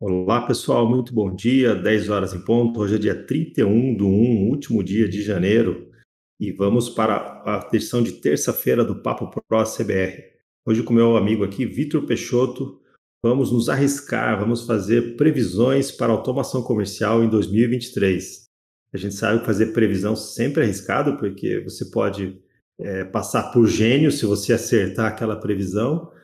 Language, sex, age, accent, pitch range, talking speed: Portuguese, male, 40-59, Brazilian, 105-120 Hz, 160 wpm